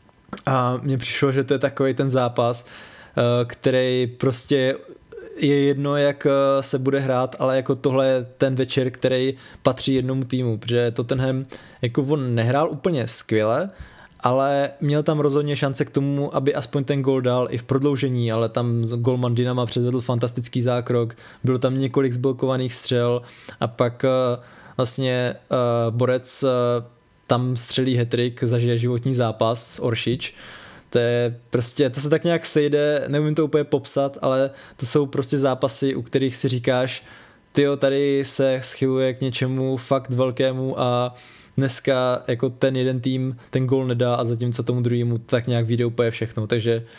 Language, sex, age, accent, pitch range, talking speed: Czech, male, 20-39, native, 120-135 Hz, 155 wpm